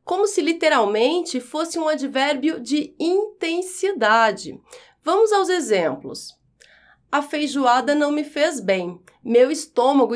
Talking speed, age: 110 wpm, 30-49